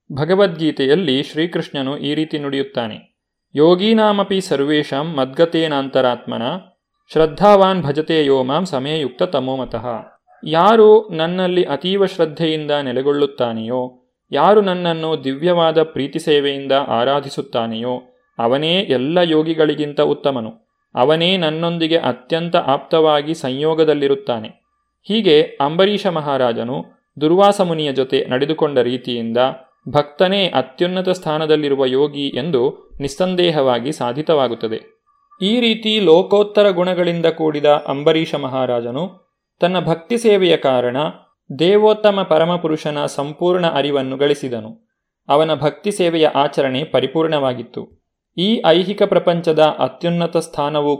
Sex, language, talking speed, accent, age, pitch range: male, Kannada, 85 wpm, native, 30-49, 135-180 Hz